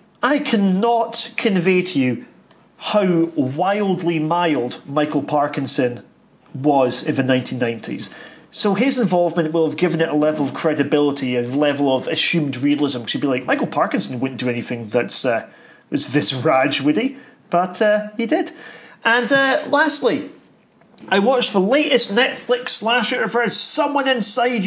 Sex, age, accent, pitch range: male, 40-59, British, 145-220 Hz